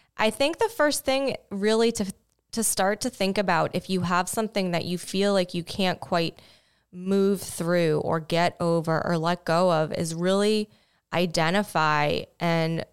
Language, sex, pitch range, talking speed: English, female, 165-195 Hz, 165 wpm